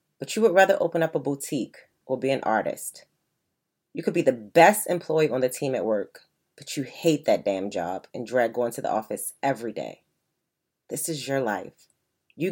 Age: 30-49